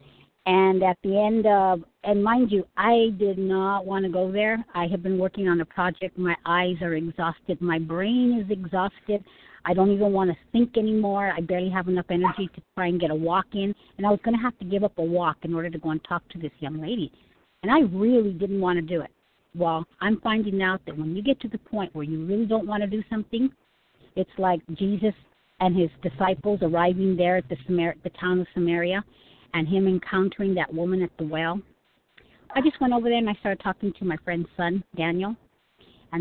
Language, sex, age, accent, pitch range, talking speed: English, female, 50-69, American, 175-210 Hz, 220 wpm